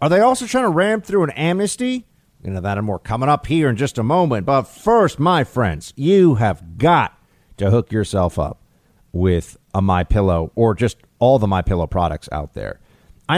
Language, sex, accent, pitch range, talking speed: English, male, American, 95-140 Hz, 195 wpm